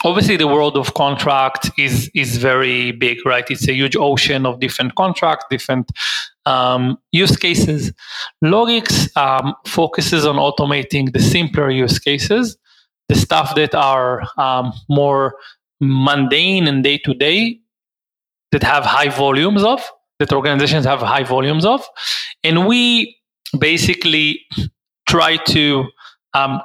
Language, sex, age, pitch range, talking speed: English, male, 30-49, 135-165 Hz, 125 wpm